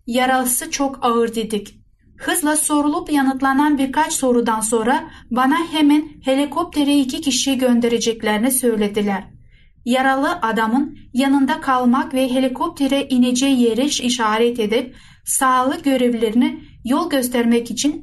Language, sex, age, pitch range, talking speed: Turkish, female, 10-29, 235-285 Hz, 105 wpm